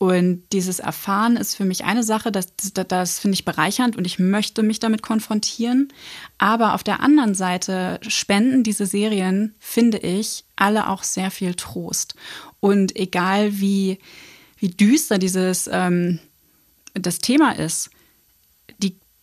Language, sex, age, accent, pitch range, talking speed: German, female, 20-39, German, 185-220 Hz, 140 wpm